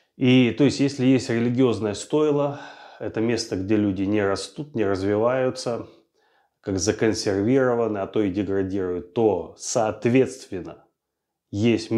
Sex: male